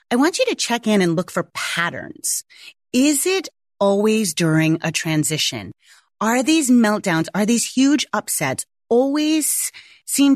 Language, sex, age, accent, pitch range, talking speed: English, female, 30-49, American, 165-220 Hz, 145 wpm